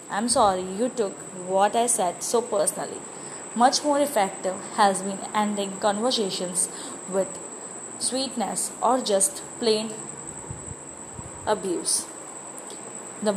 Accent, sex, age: Indian, female, 20-39